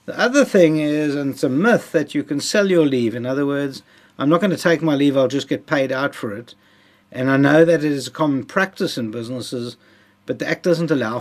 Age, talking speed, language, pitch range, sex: 60-79, 250 wpm, English, 125-170 Hz, male